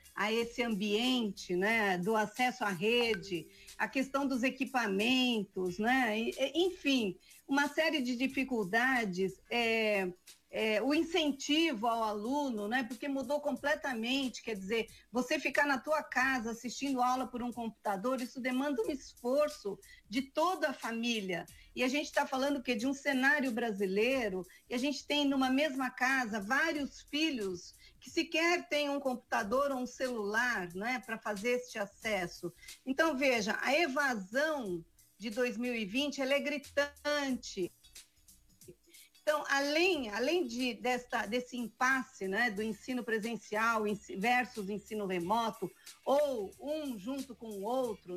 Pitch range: 220-275 Hz